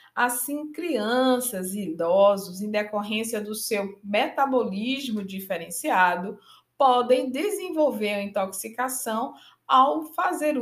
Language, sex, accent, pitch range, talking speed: Portuguese, female, Brazilian, 205-275 Hz, 90 wpm